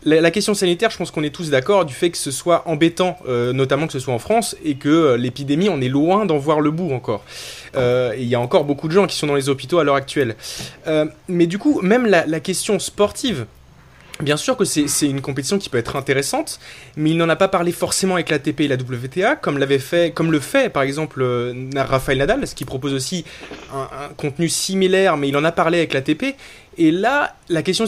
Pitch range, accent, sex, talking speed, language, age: 135-175 Hz, French, male, 240 wpm, French, 20-39